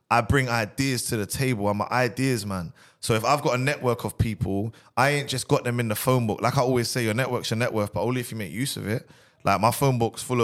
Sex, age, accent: male, 20-39, British